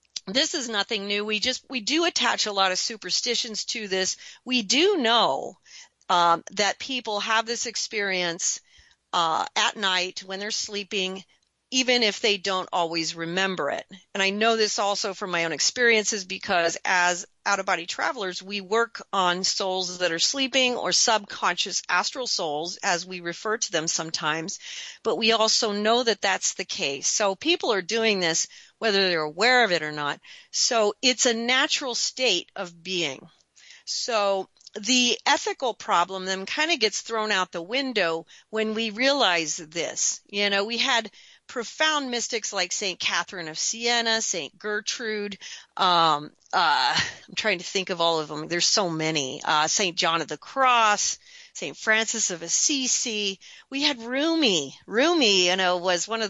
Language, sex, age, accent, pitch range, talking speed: English, female, 40-59, American, 180-235 Hz, 165 wpm